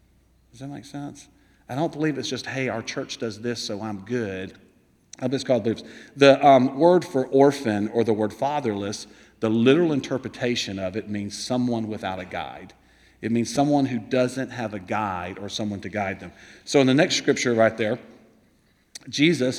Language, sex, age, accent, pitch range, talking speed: English, male, 40-59, American, 115-135 Hz, 195 wpm